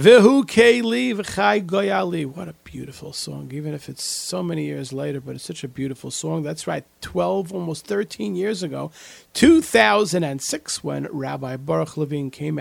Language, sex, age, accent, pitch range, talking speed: English, male, 40-59, American, 135-185 Hz, 145 wpm